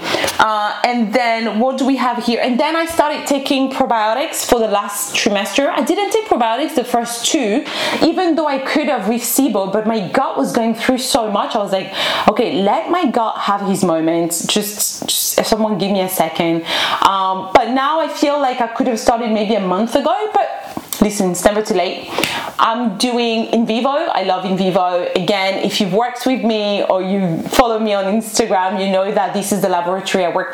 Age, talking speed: 30-49, 210 wpm